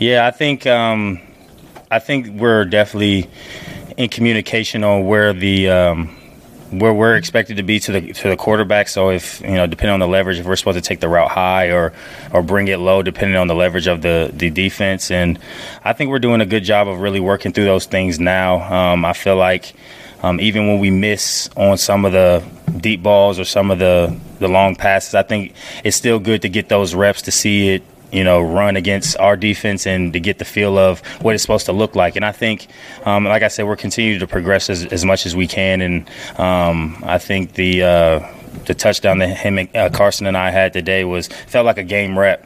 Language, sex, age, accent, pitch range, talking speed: English, male, 20-39, American, 90-105 Hz, 225 wpm